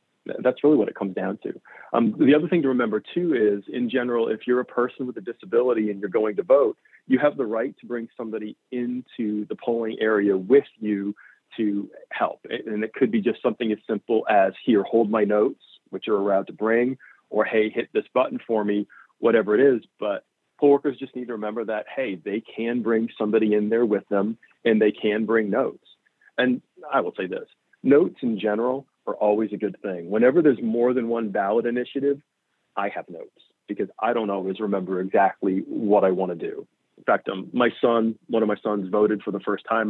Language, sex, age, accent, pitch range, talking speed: English, male, 40-59, American, 105-125 Hz, 215 wpm